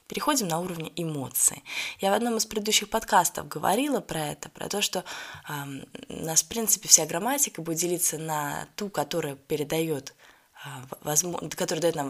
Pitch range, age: 150-205 Hz, 20-39